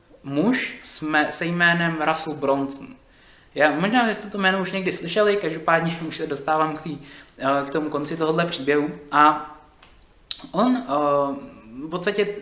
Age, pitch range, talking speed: 20-39, 150-195 Hz, 140 wpm